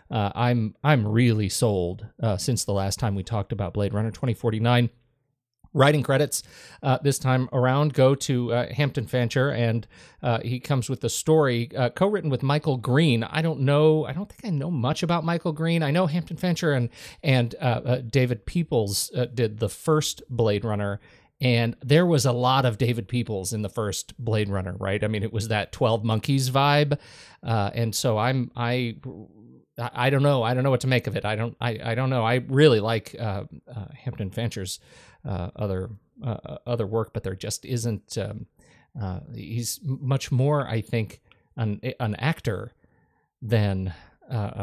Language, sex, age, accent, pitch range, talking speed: English, male, 40-59, American, 110-135 Hz, 185 wpm